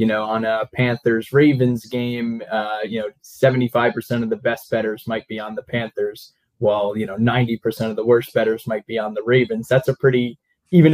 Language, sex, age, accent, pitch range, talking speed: English, male, 20-39, American, 110-130 Hz, 195 wpm